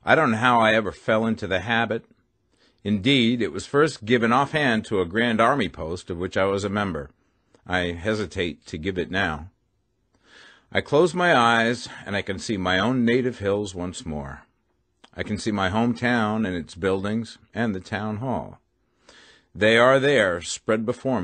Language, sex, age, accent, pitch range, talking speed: English, male, 50-69, American, 90-120 Hz, 180 wpm